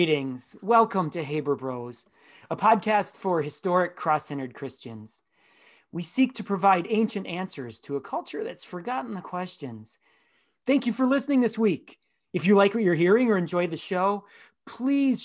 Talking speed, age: 160 wpm, 30-49